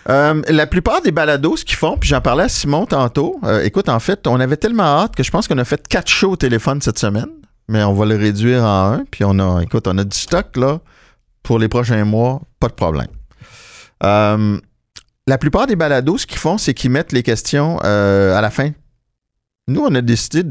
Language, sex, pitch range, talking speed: English, male, 105-140 Hz, 230 wpm